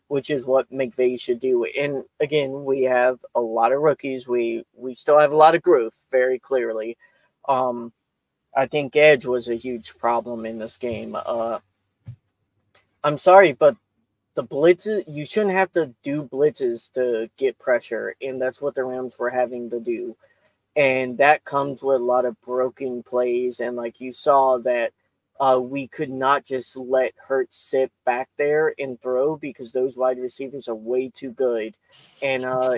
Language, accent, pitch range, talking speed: English, American, 125-150 Hz, 175 wpm